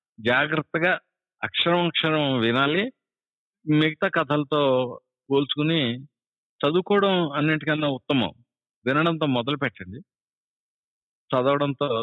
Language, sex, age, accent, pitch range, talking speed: Telugu, male, 50-69, native, 120-155 Hz, 65 wpm